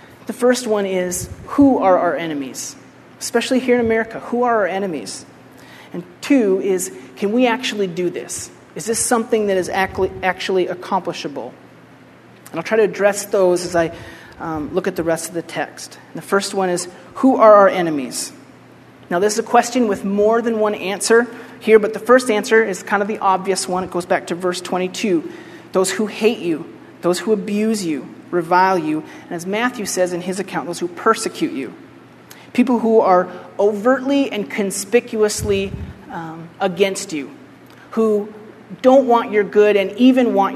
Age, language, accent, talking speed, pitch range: 30-49, English, American, 180 wpm, 180-230 Hz